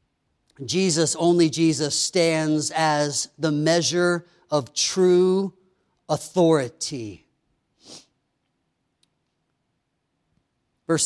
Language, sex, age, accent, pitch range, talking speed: English, male, 40-59, American, 165-225 Hz, 60 wpm